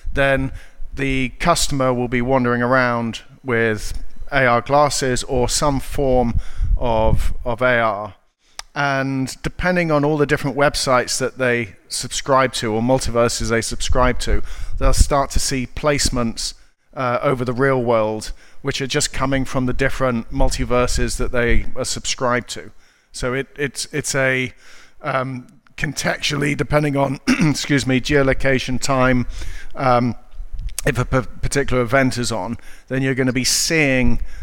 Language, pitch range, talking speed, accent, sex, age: English, 115-135 Hz, 145 wpm, British, male, 40-59